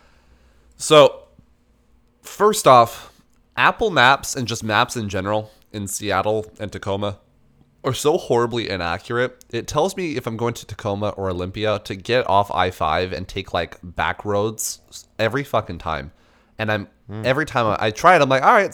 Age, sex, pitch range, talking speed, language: 20-39, male, 95-120 Hz, 165 wpm, English